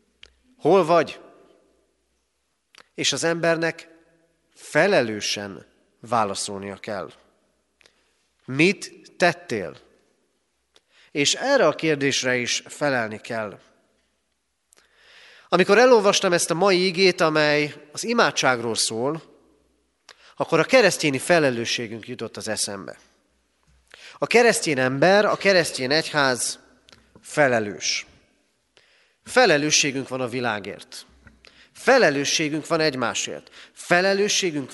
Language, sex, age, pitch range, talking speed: Hungarian, male, 30-49, 140-195 Hz, 85 wpm